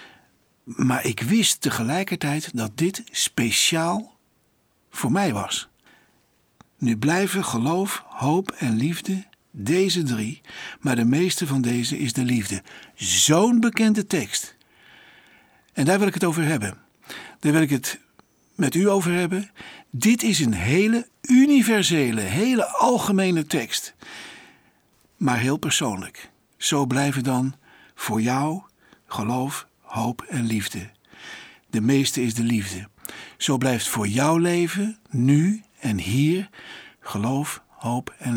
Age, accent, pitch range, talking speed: 60-79, Dutch, 120-185 Hz, 125 wpm